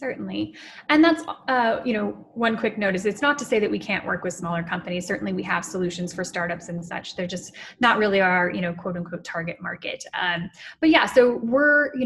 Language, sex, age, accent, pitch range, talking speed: English, female, 10-29, American, 190-245 Hz, 230 wpm